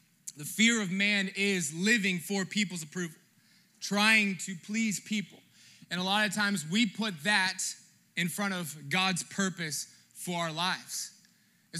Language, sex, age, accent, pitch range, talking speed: English, male, 20-39, American, 170-200 Hz, 155 wpm